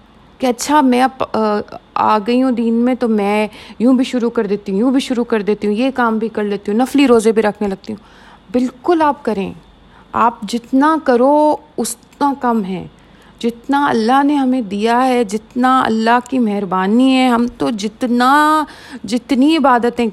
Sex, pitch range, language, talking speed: female, 210-255 Hz, Urdu, 175 wpm